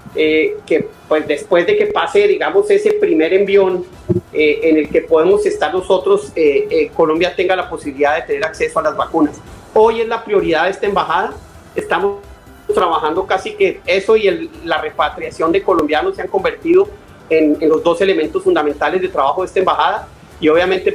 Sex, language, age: male, Spanish, 40-59